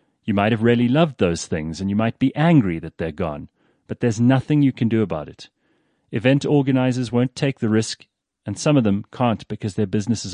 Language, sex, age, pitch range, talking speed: English, male, 40-59, 95-125 Hz, 215 wpm